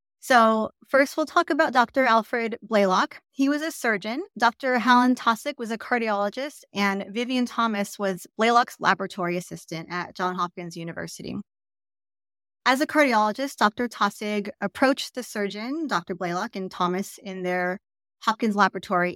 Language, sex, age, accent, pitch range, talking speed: English, female, 30-49, American, 180-230 Hz, 140 wpm